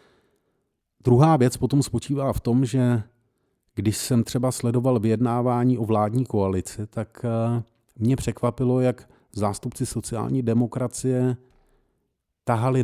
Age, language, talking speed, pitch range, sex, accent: 40-59, Czech, 105 wpm, 95-130 Hz, male, native